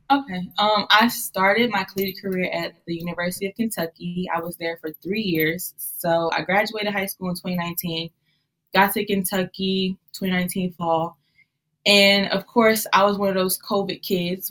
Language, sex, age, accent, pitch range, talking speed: English, female, 10-29, American, 160-190 Hz, 165 wpm